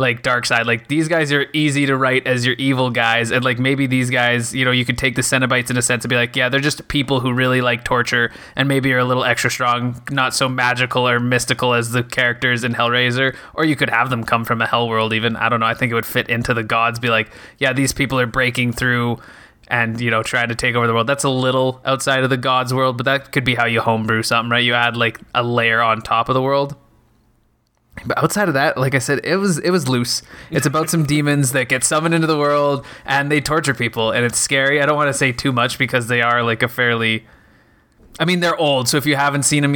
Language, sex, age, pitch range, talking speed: English, male, 20-39, 120-135 Hz, 265 wpm